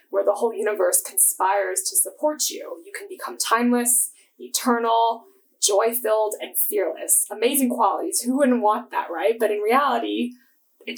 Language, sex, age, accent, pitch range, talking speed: English, female, 20-39, American, 200-295 Hz, 150 wpm